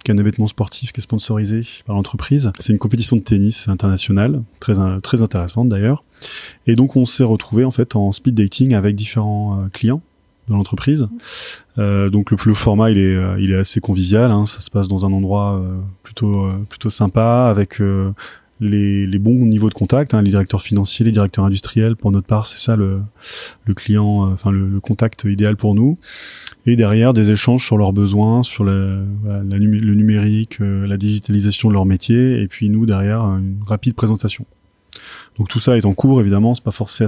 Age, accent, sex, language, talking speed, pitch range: 20-39, French, male, French, 195 wpm, 100-115 Hz